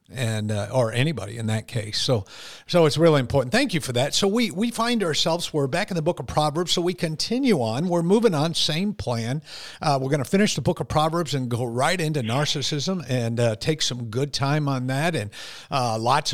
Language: English